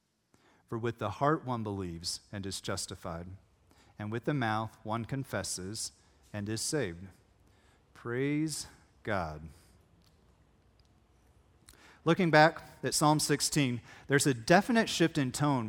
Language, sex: English, male